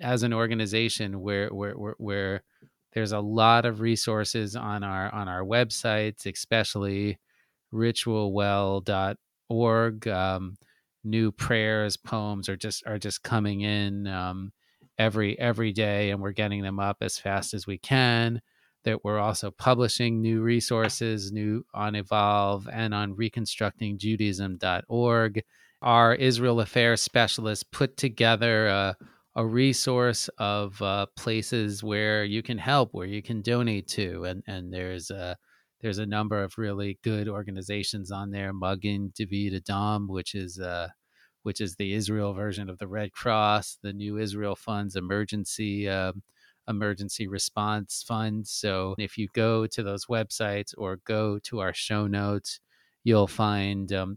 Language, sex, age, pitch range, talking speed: English, male, 30-49, 100-110 Hz, 140 wpm